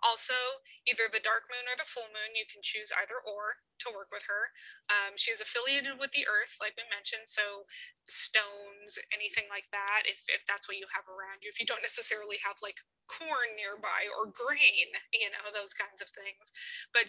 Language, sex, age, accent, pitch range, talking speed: English, female, 20-39, American, 200-250 Hz, 200 wpm